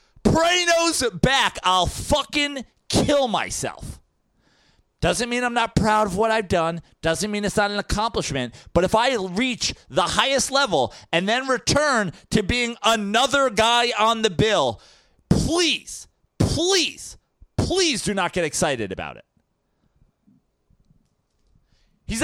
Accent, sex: American, male